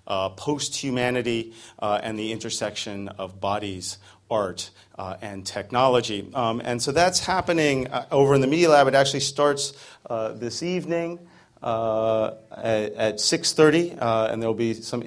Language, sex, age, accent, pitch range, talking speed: English, male, 40-59, American, 110-140 Hz, 155 wpm